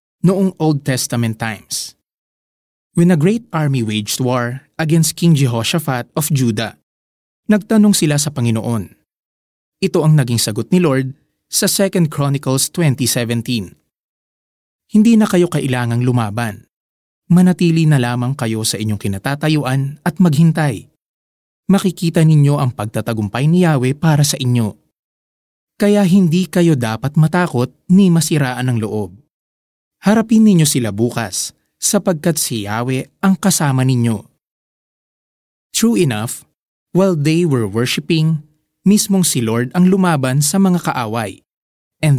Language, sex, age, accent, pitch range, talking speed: Filipino, male, 20-39, native, 120-170 Hz, 120 wpm